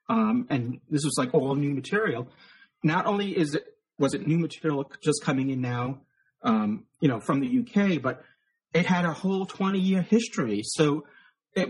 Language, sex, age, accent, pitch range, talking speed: English, male, 30-49, American, 135-190 Hz, 185 wpm